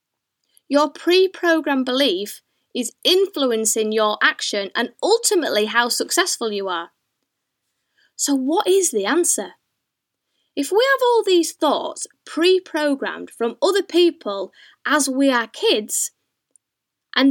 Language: English